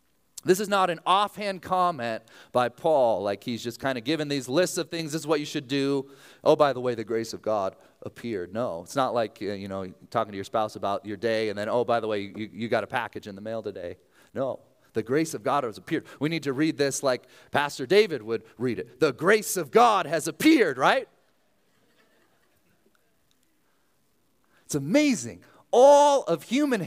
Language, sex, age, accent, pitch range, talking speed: English, male, 30-49, American, 135-220 Hz, 205 wpm